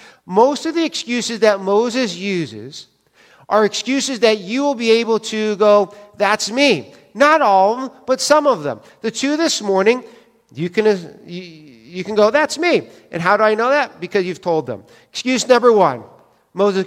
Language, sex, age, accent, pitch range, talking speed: English, male, 50-69, American, 180-235 Hz, 180 wpm